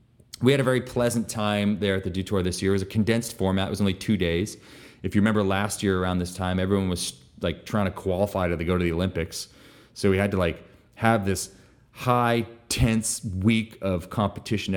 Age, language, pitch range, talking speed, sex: 30-49, English, 95-120 Hz, 220 wpm, male